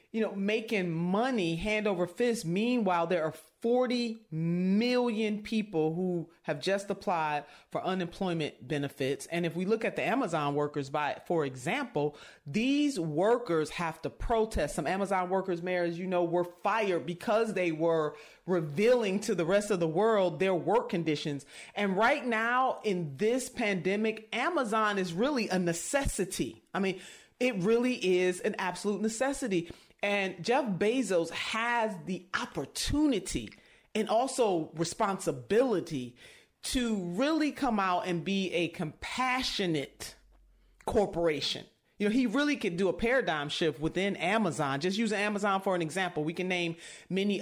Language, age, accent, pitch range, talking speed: English, 40-59, American, 170-225 Hz, 145 wpm